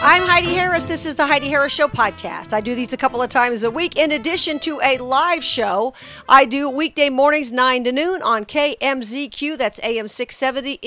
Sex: female